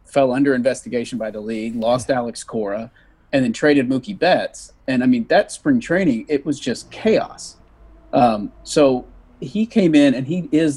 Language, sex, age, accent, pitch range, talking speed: English, male, 40-59, American, 115-150 Hz, 180 wpm